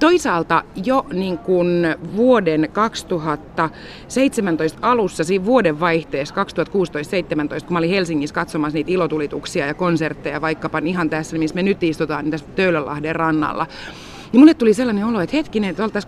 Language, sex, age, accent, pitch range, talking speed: Finnish, female, 30-49, native, 155-200 Hz, 140 wpm